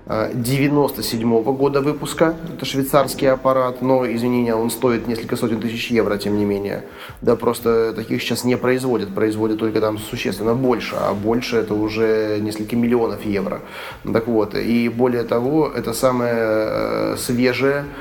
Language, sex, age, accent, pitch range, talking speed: Russian, male, 30-49, native, 110-125 Hz, 145 wpm